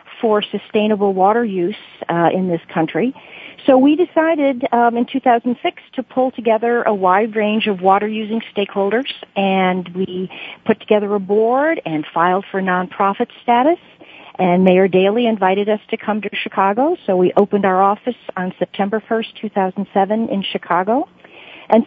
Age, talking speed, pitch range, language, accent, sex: 40-59, 150 wpm, 185-235 Hz, English, American, female